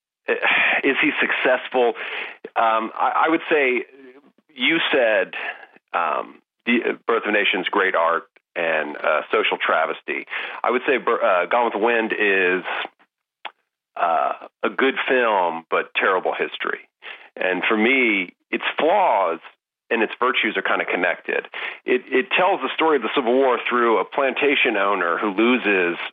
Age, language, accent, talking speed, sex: 40-59, English, American, 150 wpm, male